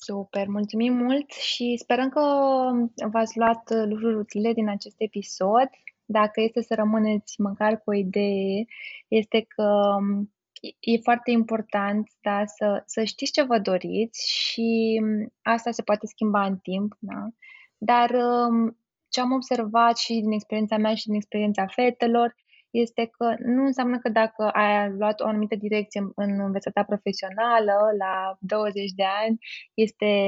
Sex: female